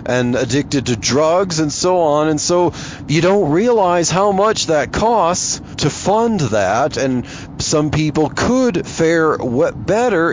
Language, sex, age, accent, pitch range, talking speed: English, male, 40-59, American, 130-180 Hz, 145 wpm